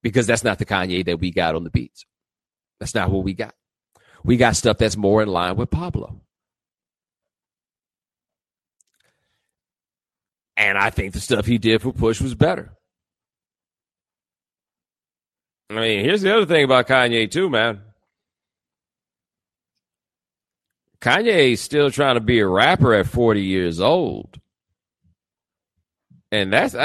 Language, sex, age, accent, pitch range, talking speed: English, male, 40-59, American, 95-130 Hz, 135 wpm